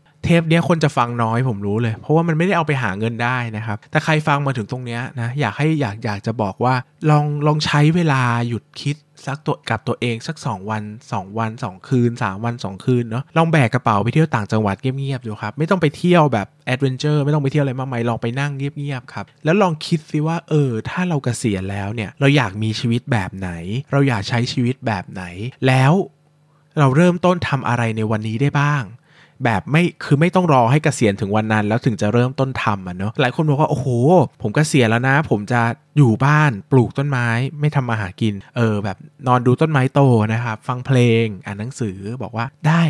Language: Thai